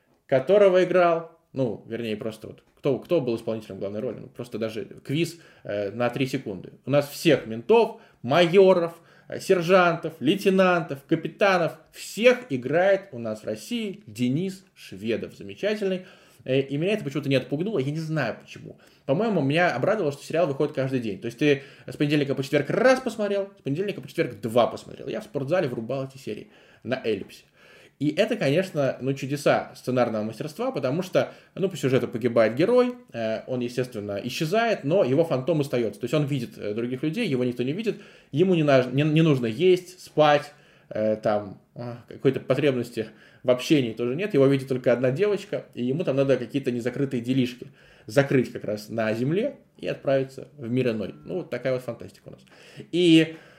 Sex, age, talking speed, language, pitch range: male, 20-39, 170 wpm, Russian, 125-175 Hz